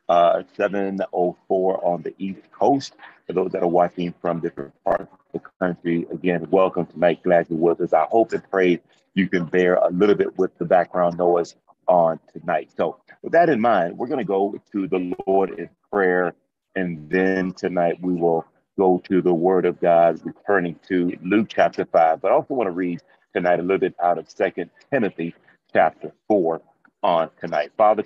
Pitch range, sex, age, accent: 85-95 Hz, male, 40-59, American